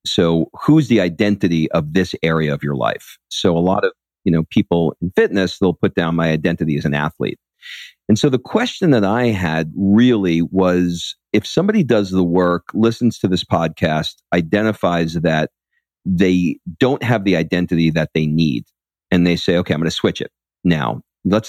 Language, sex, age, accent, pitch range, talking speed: English, male, 50-69, American, 80-105 Hz, 180 wpm